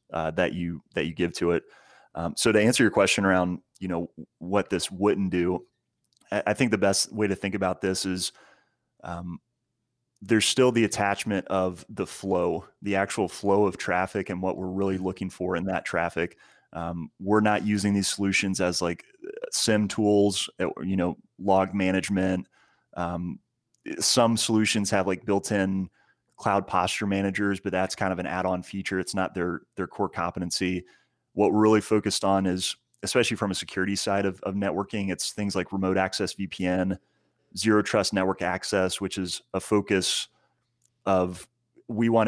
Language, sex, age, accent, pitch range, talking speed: English, male, 30-49, American, 90-100 Hz, 170 wpm